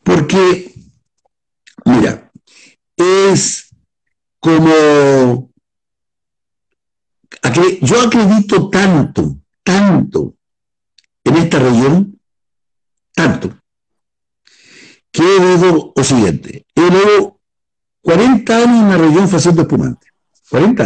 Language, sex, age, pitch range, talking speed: Portuguese, male, 60-79, 155-215 Hz, 80 wpm